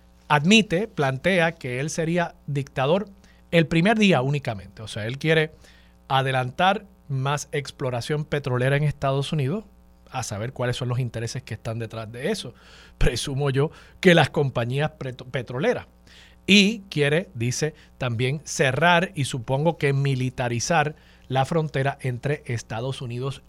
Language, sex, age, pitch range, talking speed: Spanish, male, 40-59, 120-160 Hz, 135 wpm